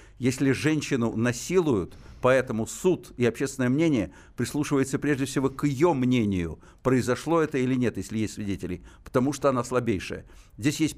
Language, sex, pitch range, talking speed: Russian, male, 110-150 Hz, 150 wpm